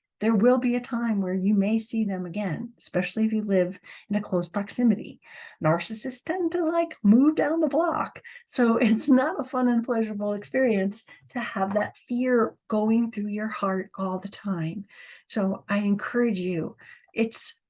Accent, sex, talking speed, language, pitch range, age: American, female, 175 wpm, English, 185-240 Hz, 50-69